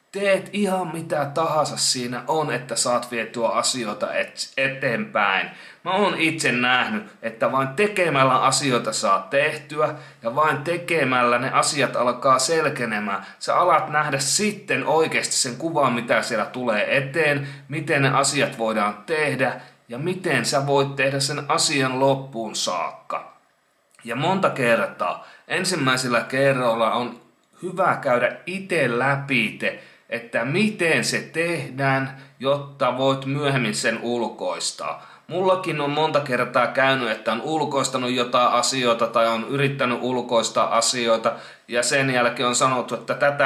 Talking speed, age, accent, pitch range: 130 wpm, 30-49, native, 120-155 Hz